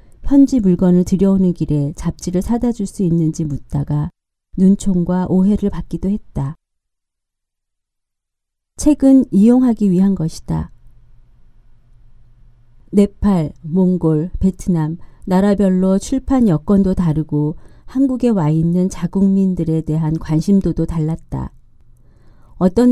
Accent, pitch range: native, 155-205 Hz